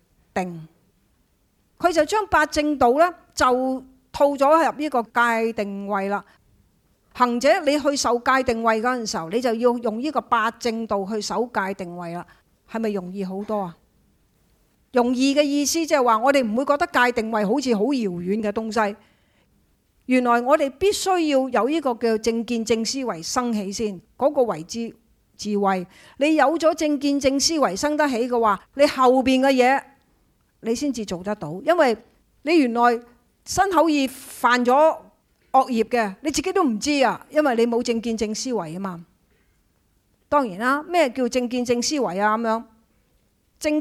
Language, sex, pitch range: Chinese, female, 210-275 Hz